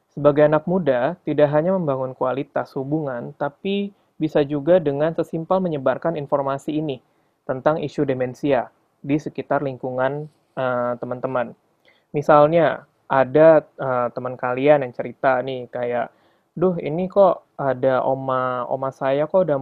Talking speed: 130 wpm